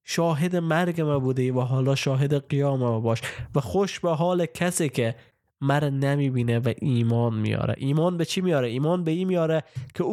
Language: Persian